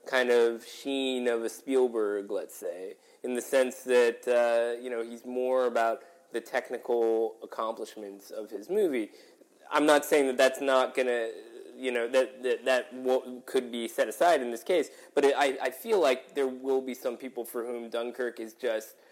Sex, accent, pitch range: male, American, 115-135 Hz